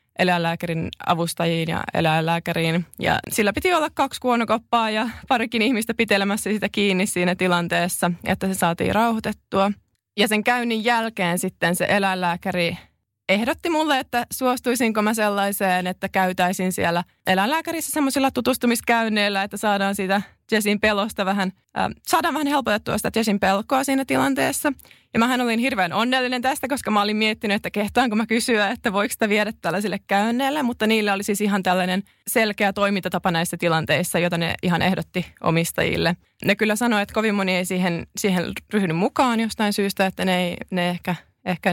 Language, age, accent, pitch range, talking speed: Finnish, 20-39, native, 185-225 Hz, 160 wpm